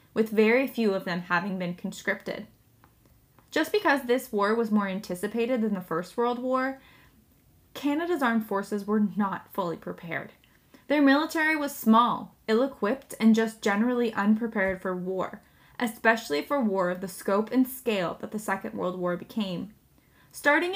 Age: 10-29